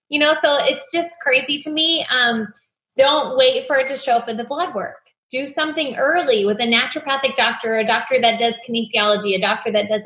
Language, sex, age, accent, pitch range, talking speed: English, female, 20-39, American, 215-275 Hz, 215 wpm